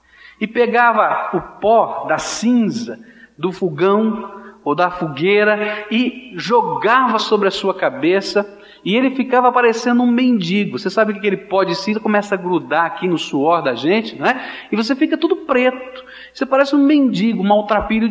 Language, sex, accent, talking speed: Portuguese, male, Brazilian, 170 wpm